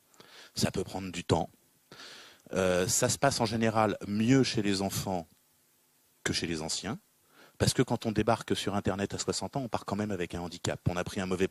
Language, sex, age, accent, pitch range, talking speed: French, male, 30-49, French, 95-125 Hz, 215 wpm